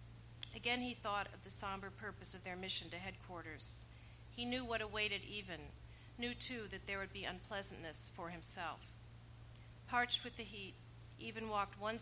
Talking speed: 165 wpm